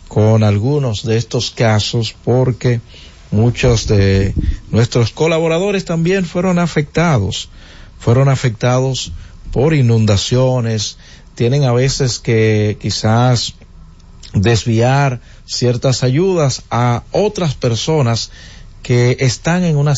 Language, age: Spanish, 50-69